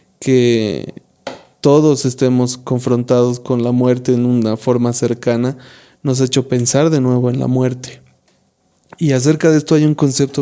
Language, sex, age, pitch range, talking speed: Spanish, male, 20-39, 125-140 Hz, 155 wpm